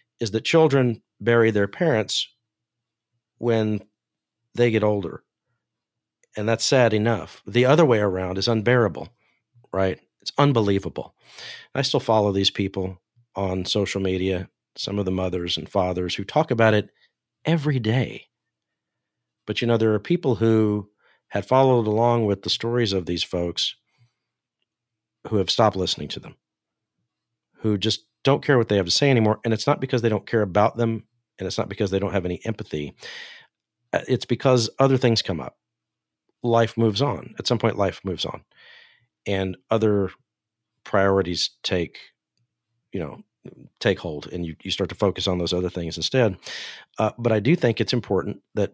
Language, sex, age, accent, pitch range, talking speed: English, male, 50-69, American, 100-120 Hz, 165 wpm